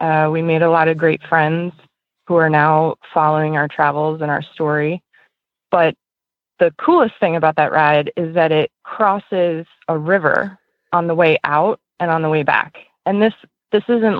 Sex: female